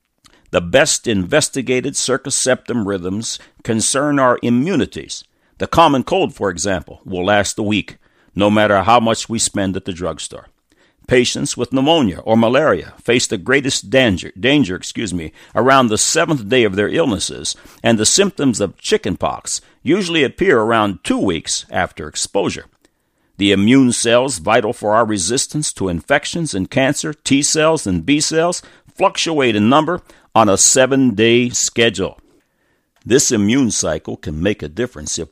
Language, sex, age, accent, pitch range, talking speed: English, male, 60-79, American, 95-130 Hz, 145 wpm